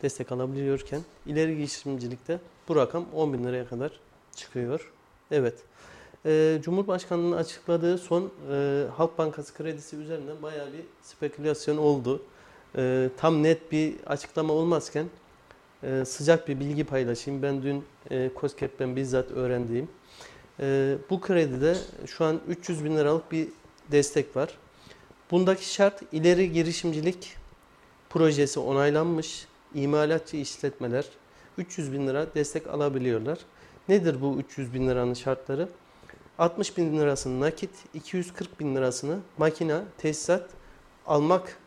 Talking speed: 120 wpm